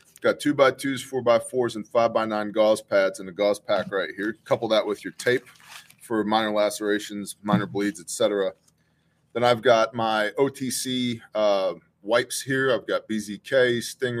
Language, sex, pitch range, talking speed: English, male, 105-120 Hz, 175 wpm